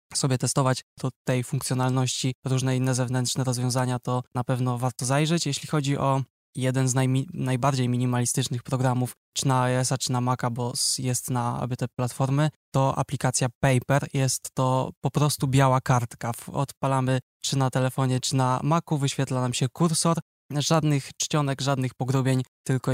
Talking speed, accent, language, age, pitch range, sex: 155 wpm, native, Polish, 20-39, 125-140 Hz, male